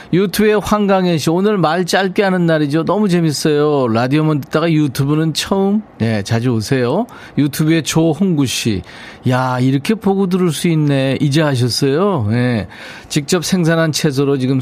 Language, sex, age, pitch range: Korean, male, 40-59, 120-170 Hz